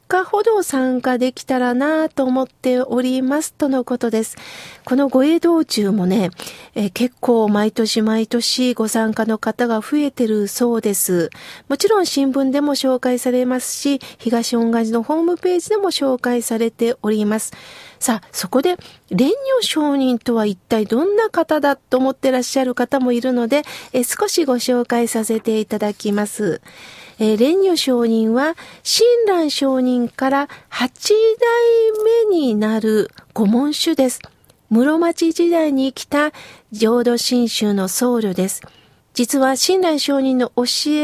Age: 40-59